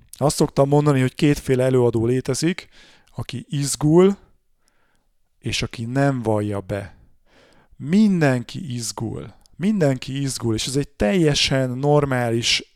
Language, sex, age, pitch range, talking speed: Hungarian, male, 30-49, 120-145 Hz, 110 wpm